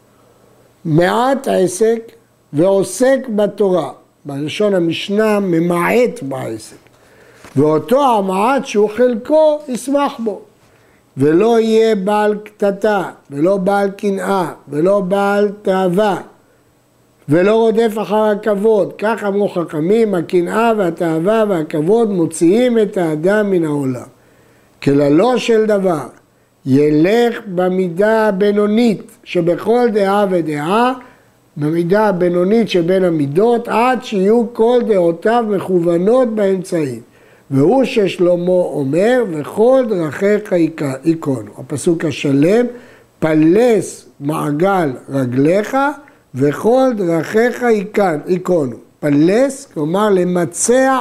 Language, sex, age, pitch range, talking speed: Hebrew, male, 60-79, 155-220 Hz, 90 wpm